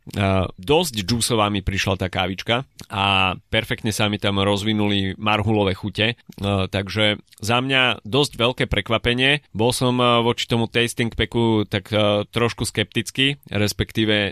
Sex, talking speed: male, 145 wpm